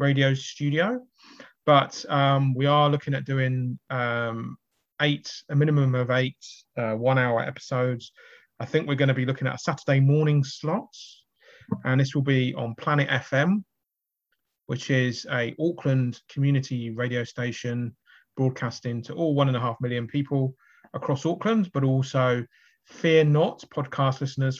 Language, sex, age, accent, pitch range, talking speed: English, male, 30-49, British, 125-145 Hz, 150 wpm